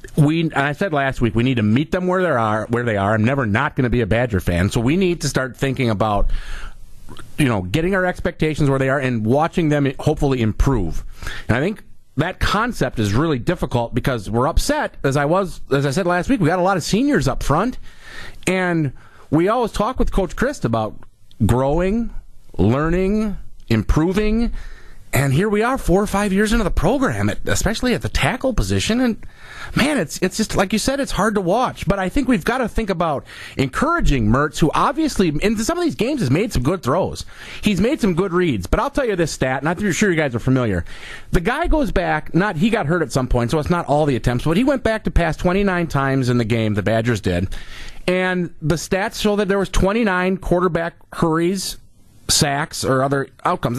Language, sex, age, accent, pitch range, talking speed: English, male, 40-59, American, 120-195 Hz, 220 wpm